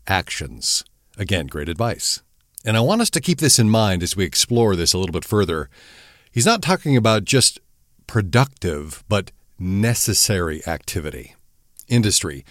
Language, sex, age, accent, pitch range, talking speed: English, male, 50-69, American, 95-125 Hz, 150 wpm